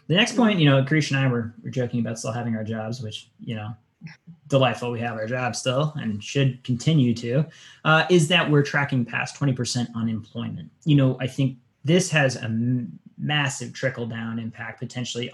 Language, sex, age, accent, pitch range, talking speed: English, male, 20-39, American, 115-135 Hz, 190 wpm